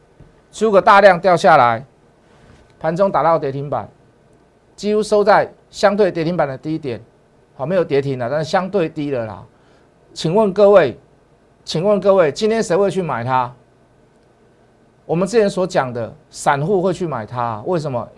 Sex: male